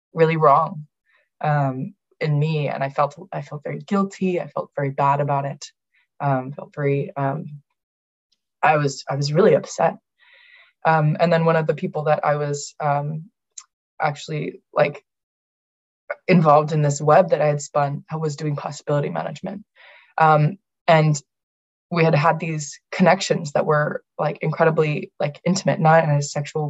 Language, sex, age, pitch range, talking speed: English, female, 20-39, 145-170 Hz, 160 wpm